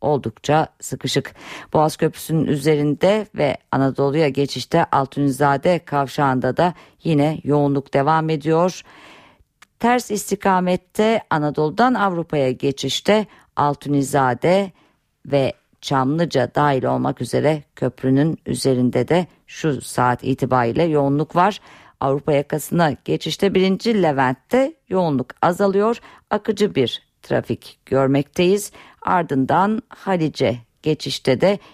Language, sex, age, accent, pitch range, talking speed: Turkish, female, 50-69, native, 140-185 Hz, 95 wpm